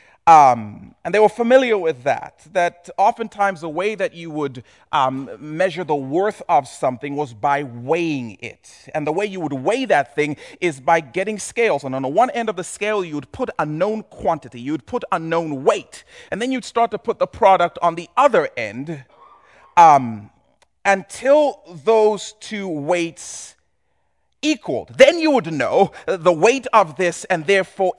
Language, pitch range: English, 150-230 Hz